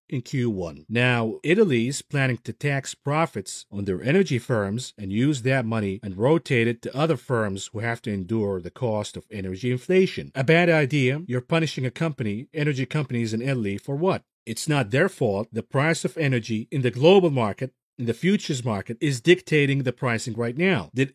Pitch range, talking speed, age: 115-145 Hz, 195 wpm, 40-59